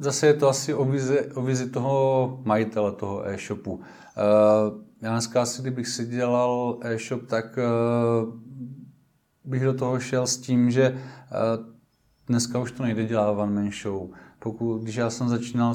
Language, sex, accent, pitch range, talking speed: Czech, male, native, 105-120 Hz, 140 wpm